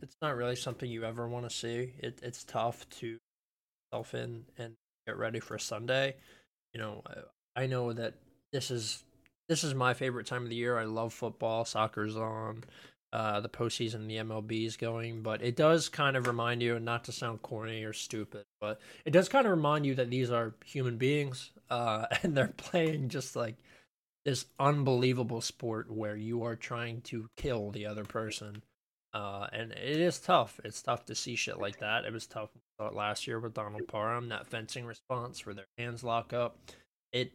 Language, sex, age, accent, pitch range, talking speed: English, male, 20-39, American, 115-130 Hz, 195 wpm